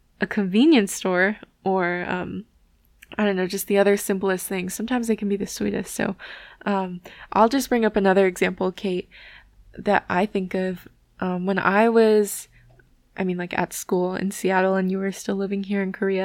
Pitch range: 195-230 Hz